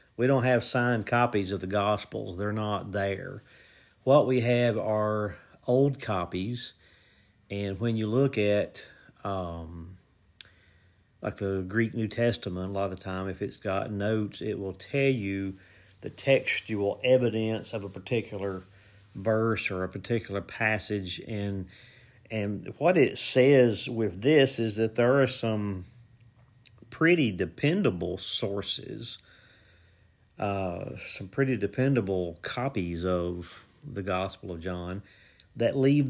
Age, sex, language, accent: 40-59, male, English, American